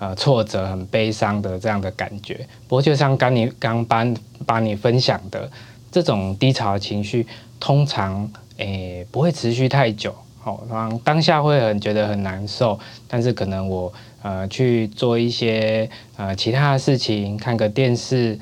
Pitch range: 105-125 Hz